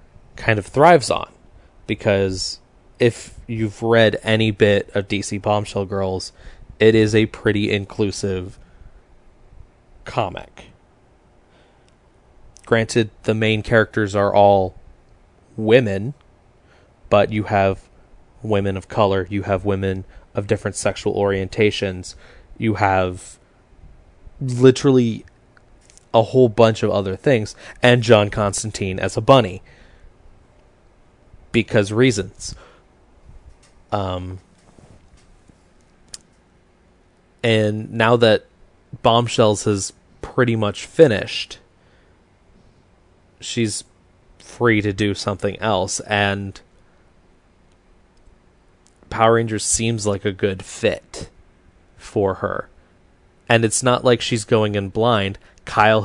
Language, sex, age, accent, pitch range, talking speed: English, male, 20-39, American, 95-110 Hz, 95 wpm